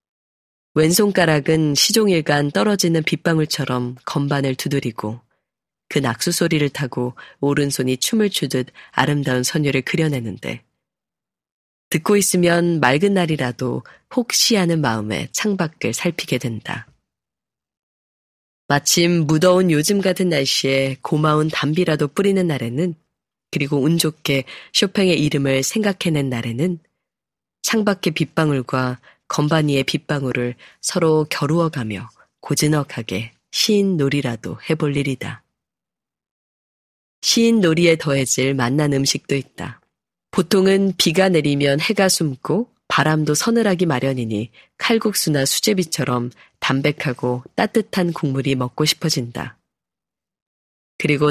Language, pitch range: Korean, 135-175 Hz